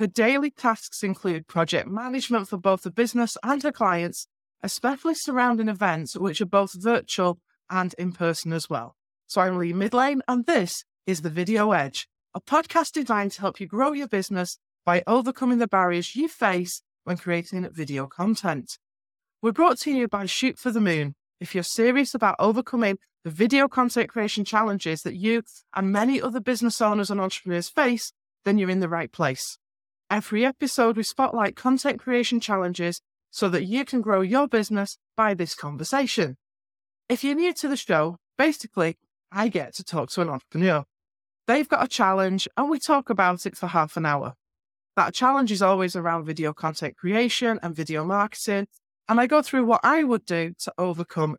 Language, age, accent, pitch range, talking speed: English, 30-49, British, 175-240 Hz, 180 wpm